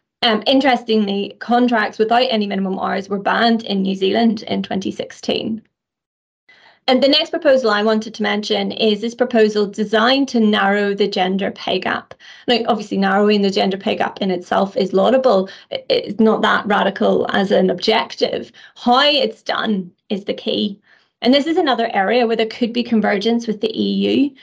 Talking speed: 170 wpm